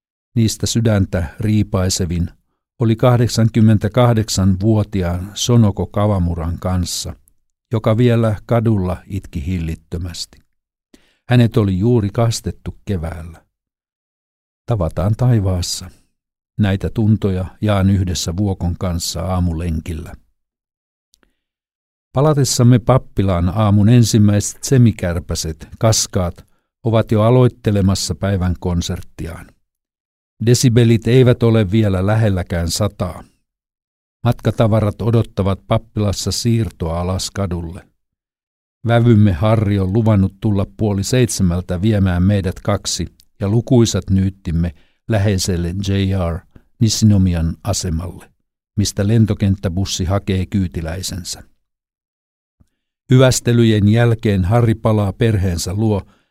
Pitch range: 90-110 Hz